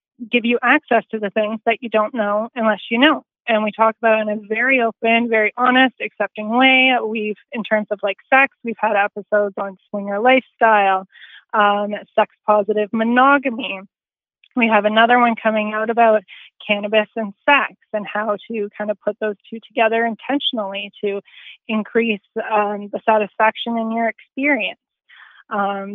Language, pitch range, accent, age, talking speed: English, 210-230 Hz, American, 20-39, 160 wpm